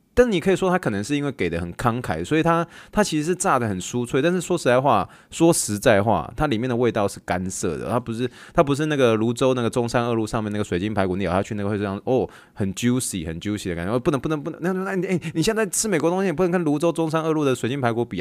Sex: male